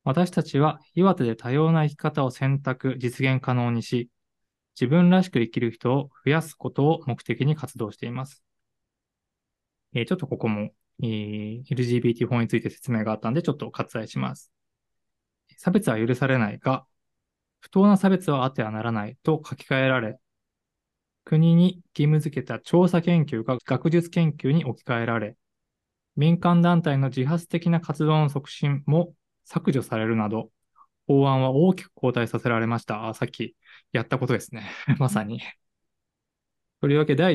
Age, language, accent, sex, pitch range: 20-39, Japanese, native, male, 115-155 Hz